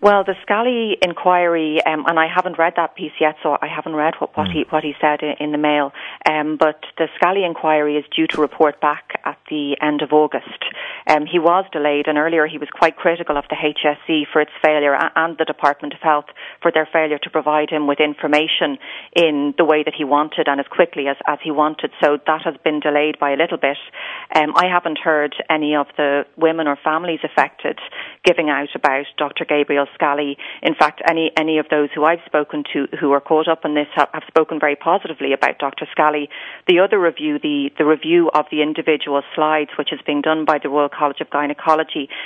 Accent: Irish